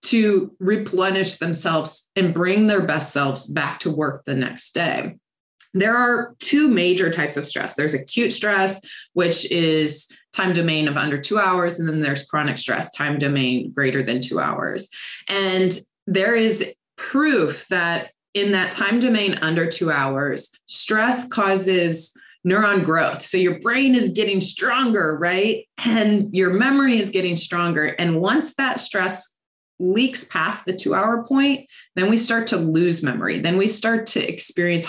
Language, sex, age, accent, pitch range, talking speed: English, female, 20-39, American, 165-205 Hz, 160 wpm